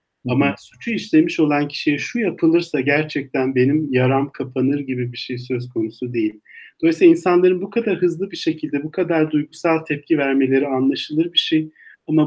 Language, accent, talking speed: Turkish, native, 160 wpm